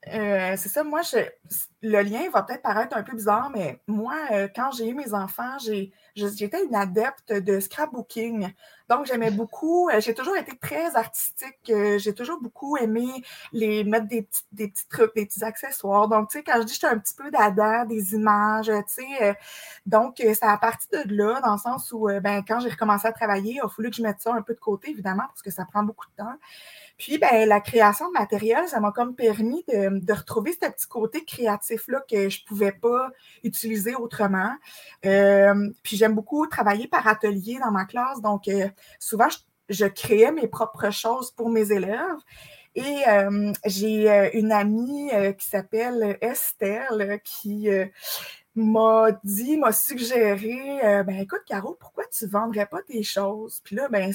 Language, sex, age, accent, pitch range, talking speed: French, female, 20-39, Canadian, 205-240 Hz, 195 wpm